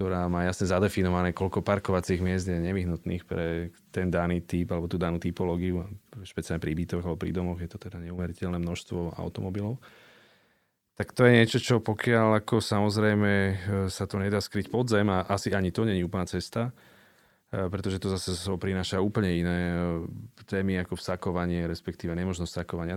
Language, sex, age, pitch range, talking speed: Slovak, male, 30-49, 85-95 Hz, 165 wpm